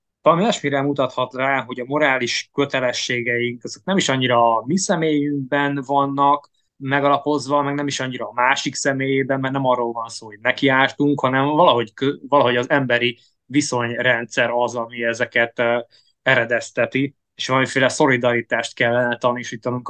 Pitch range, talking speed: 120-140 Hz, 140 wpm